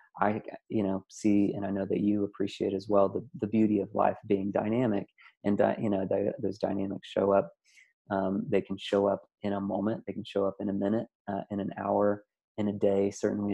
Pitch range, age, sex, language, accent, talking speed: 100-105 Hz, 30-49, male, English, American, 225 wpm